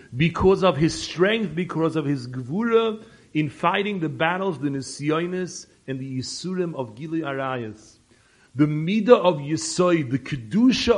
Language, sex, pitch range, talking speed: English, male, 130-180 Hz, 140 wpm